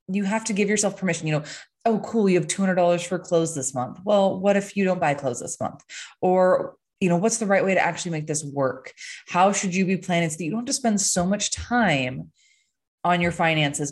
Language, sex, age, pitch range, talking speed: English, female, 20-39, 145-185 Hz, 240 wpm